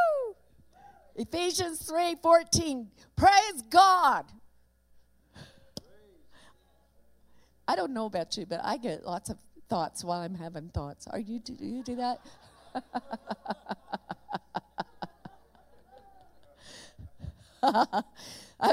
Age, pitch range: 50-69, 245-320 Hz